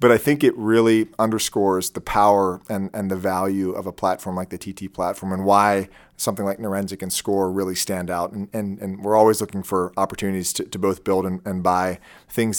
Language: English